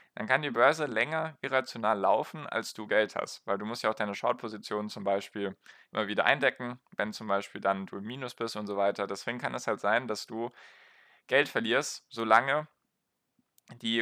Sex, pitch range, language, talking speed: male, 105-125 Hz, German, 195 wpm